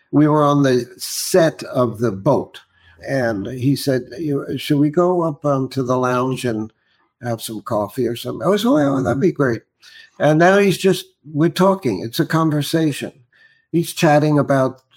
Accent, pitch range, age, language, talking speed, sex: American, 125-155 Hz, 60-79, English, 175 wpm, male